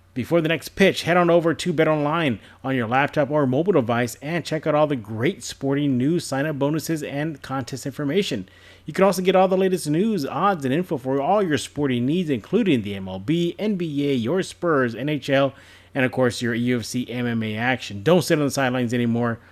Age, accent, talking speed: 30-49, American, 195 wpm